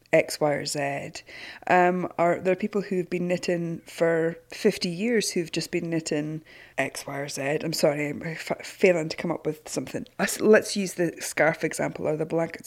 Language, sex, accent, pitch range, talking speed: English, female, British, 165-210 Hz, 200 wpm